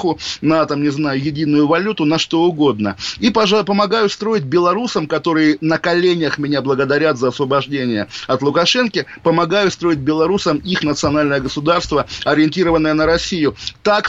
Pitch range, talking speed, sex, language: 135-165 Hz, 140 wpm, male, Russian